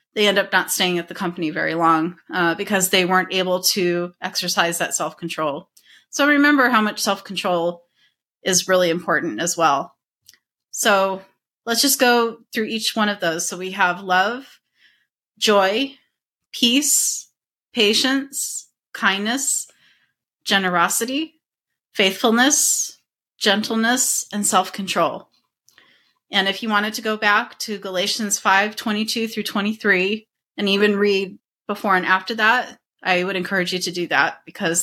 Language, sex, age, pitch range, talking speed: English, female, 30-49, 180-220 Hz, 135 wpm